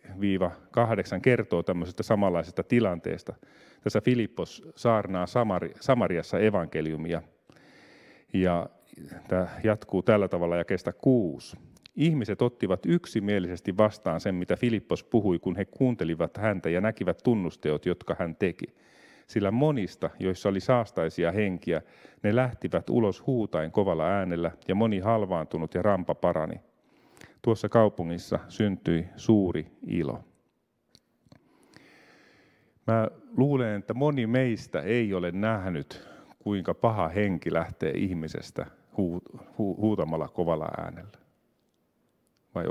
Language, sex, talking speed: Finnish, male, 110 wpm